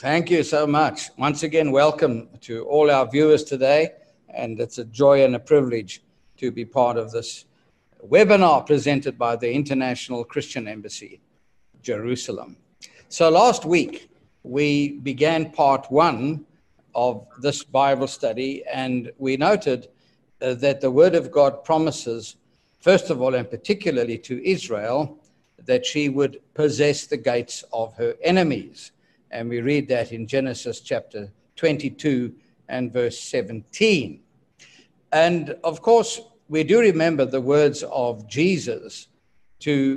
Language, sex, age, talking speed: English, male, 60-79, 135 wpm